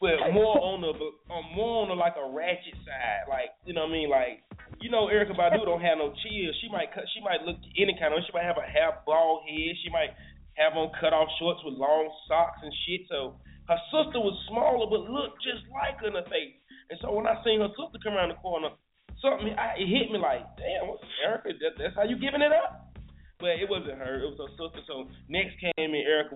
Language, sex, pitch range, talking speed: English, male, 150-195 Hz, 240 wpm